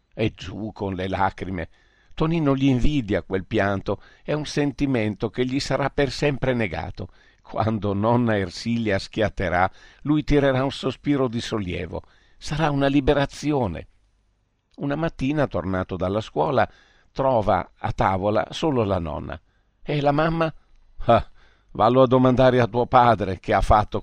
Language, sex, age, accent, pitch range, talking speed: Italian, male, 50-69, native, 95-135 Hz, 135 wpm